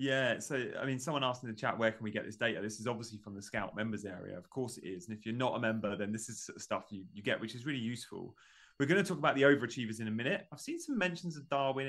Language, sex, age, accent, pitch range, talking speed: English, male, 30-49, British, 105-135 Hz, 305 wpm